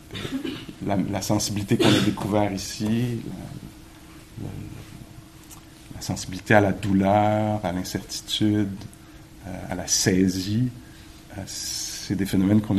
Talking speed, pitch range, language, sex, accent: 115 wpm, 95-110 Hz, English, male, French